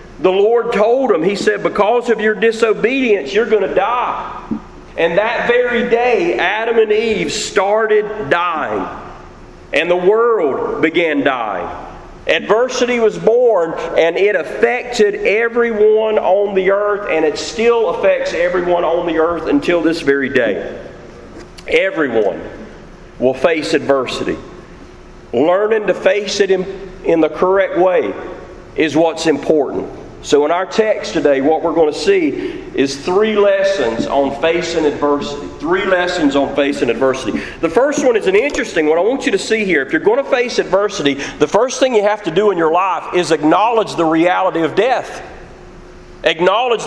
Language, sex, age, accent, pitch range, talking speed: English, male, 40-59, American, 175-240 Hz, 155 wpm